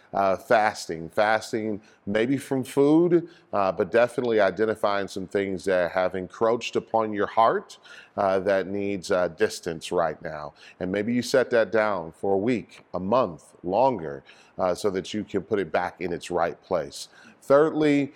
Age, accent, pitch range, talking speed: 40-59, American, 95-125 Hz, 165 wpm